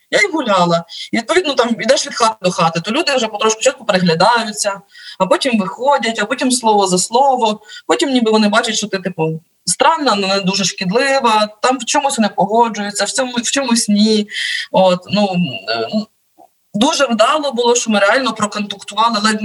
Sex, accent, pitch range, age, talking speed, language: female, native, 180-230 Hz, 20-39, 170 wpm, Ukrainian